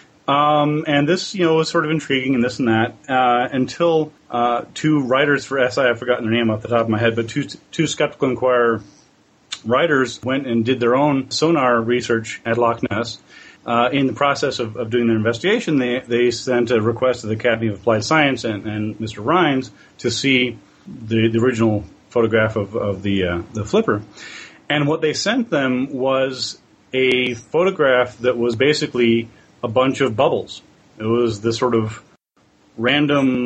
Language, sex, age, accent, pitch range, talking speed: English, male, 30-49, American, 115-145 Hz, 185 wpm